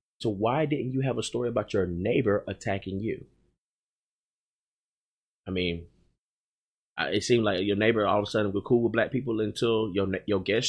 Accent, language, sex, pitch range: American, English, male, 95-120 Hz